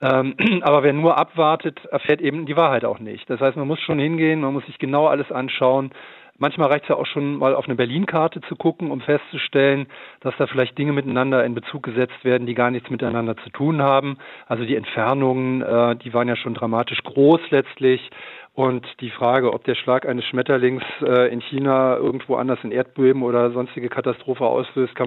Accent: German